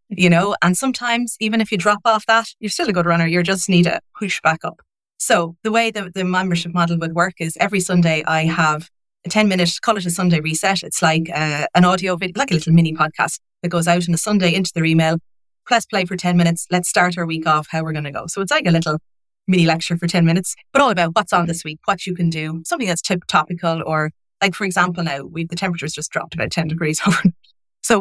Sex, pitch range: female, 165-195 Hz